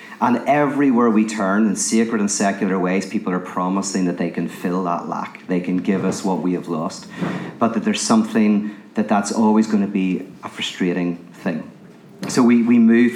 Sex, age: male, 40-59